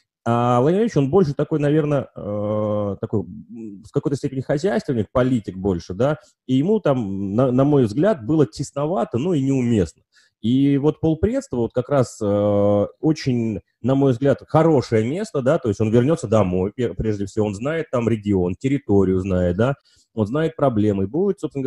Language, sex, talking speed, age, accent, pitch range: Russian, male, 165 wpm, 30-49, native, 105-145 Hz